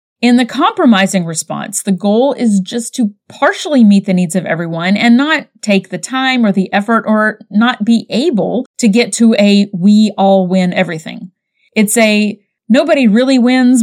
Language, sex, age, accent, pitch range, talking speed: English, female, 30-49, American, 195-255 Hz, 175 wpm